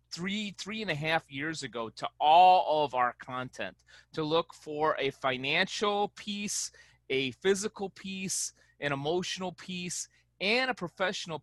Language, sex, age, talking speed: English, male, 30-49, 140 wpm